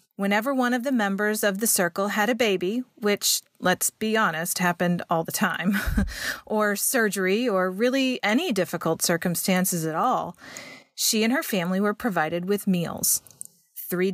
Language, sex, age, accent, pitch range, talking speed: English, female, 40-59, American, 185-245 Hz, 155 wpm